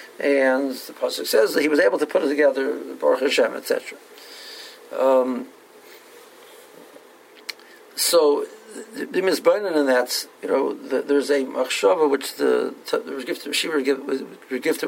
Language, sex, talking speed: English, male, 135 wpm